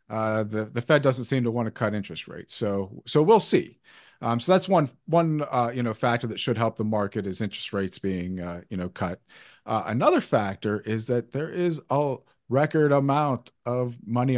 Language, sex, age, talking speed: English, male, 40-59, 205 wpm